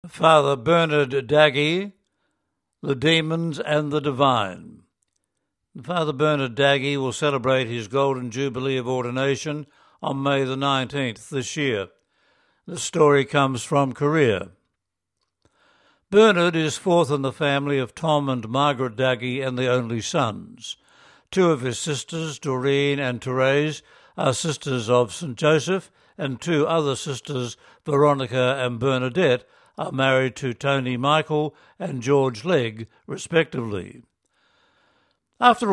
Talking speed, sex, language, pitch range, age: 125 wpm, male, English, 130-155 Hz, 60-79